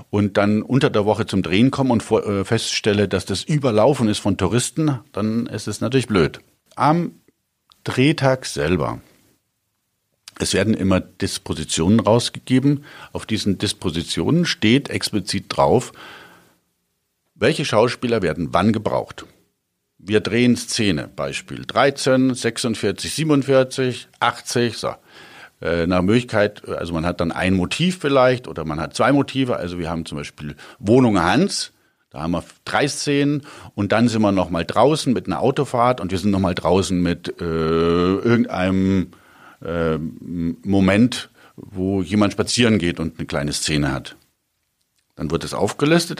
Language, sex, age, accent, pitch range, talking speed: German, male, 50-69, German, 85-125 Hz, 140 wpm